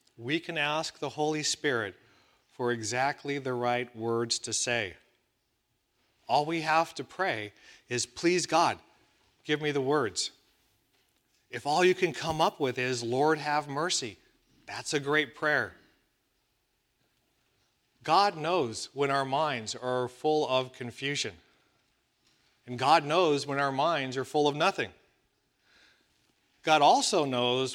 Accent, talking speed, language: American, 135 wpm, English